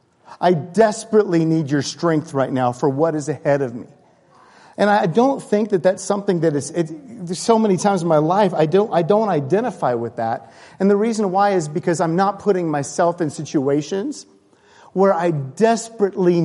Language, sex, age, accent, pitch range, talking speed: English, male, 50-69, American, 125-190 Hz, 185 wpm